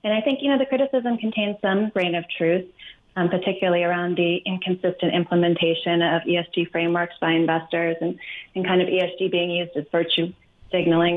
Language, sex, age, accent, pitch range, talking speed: English, female, 30-49, American, 175-205 Hz, 175 wpm